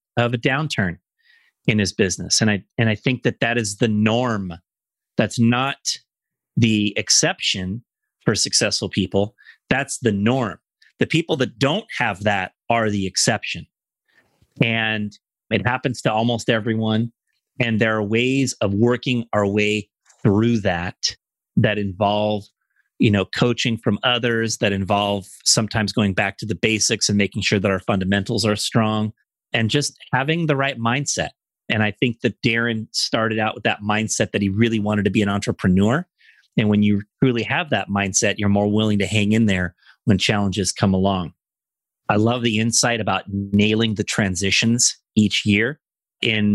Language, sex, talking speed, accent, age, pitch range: English, male, 165 wpm, American, 30-49, 100-120 Hz